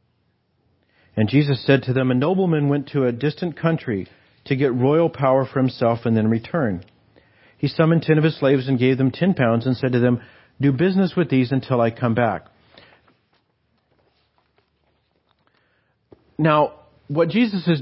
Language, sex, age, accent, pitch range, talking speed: English, male, 50-69, American, 125-155 Hz, 160 wpm